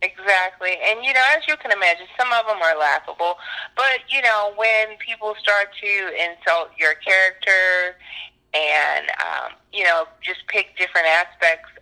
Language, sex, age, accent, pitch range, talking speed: English, female, 30-49, American, 160-190 Hz, 155 wpm